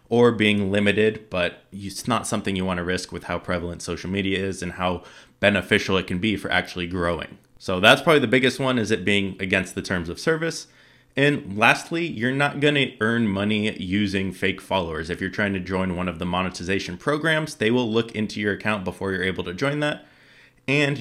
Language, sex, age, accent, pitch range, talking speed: English, male, 20-39, American, 90-115 Hz, 210 wpm